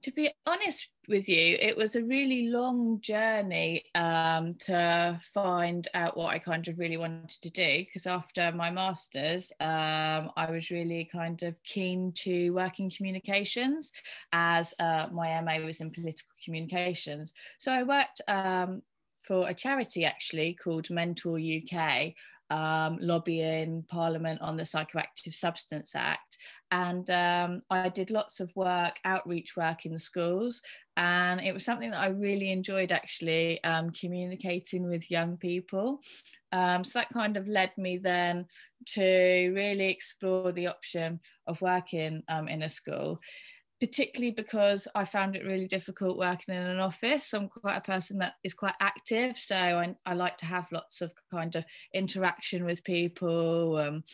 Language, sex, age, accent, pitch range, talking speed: English, female, 20-39, British, 170-195 Hz, 155 wpm